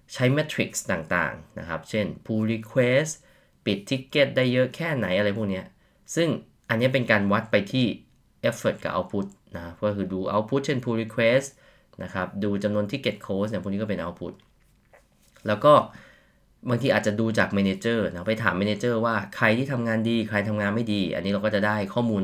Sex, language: male, Thai